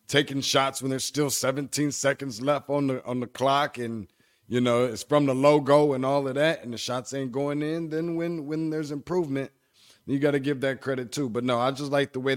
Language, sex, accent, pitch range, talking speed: English, male, American, 115-150 Hz, 240 wpm